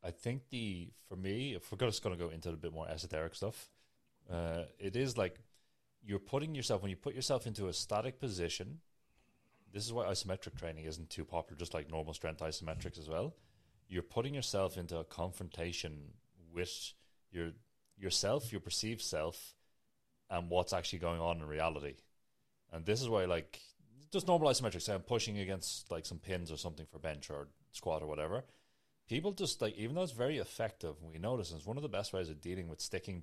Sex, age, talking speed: male, 30-49, 200 wpm